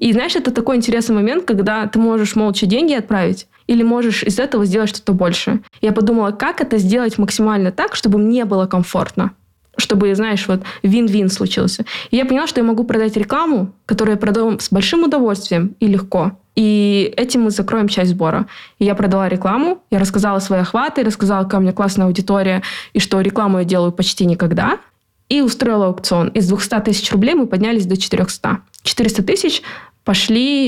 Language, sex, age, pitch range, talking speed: Russian, female, 20-39, 195-235 Hz, 180 wpm